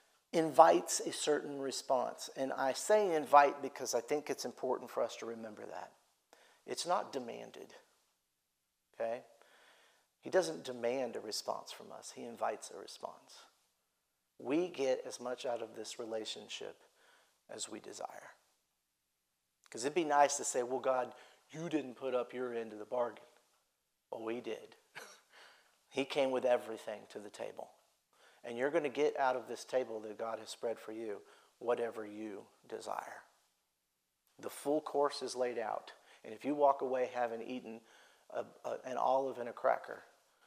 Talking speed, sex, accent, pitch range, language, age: 160 wpm, male, American, 115-145 Hz, English, 50-69